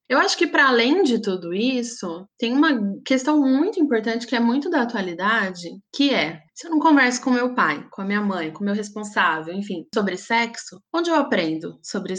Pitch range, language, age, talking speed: 190-250 Hz, Portuguese, 20-39, 205 wpm